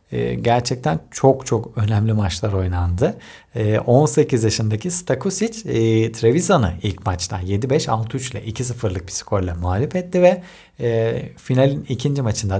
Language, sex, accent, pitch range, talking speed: Turkish, male, native, 100-125 Hz, 130 wpm